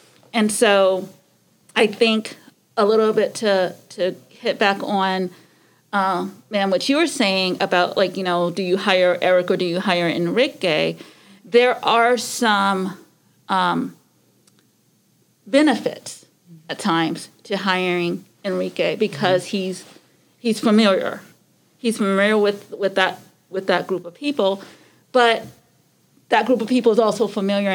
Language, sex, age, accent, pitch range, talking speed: English, female, 40-59, American, 185-220 Hz, 135 wpm